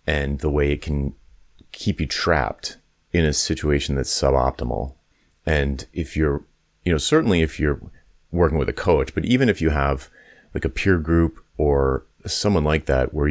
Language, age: English, 30-49